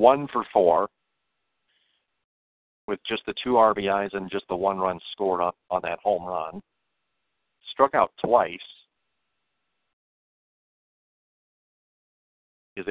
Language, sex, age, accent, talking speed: English, male, 50-69, American, 105 wpm